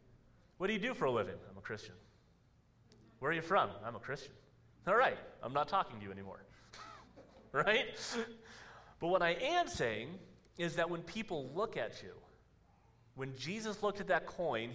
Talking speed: 180 wpm